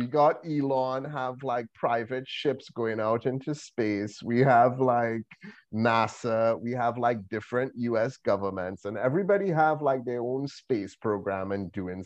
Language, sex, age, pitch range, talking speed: English, male, 30-49, 110-145 Hz, 155 wpm